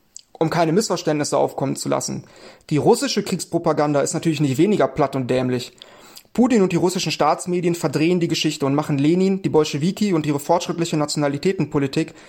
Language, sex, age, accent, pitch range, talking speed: German, male, 30-49, German, 155-185 Hz, 160 wpm